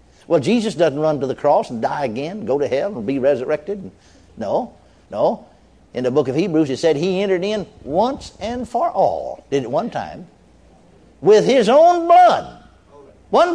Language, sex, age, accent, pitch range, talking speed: English, male, 60-79, American, 245-325 Hz, 180 wpm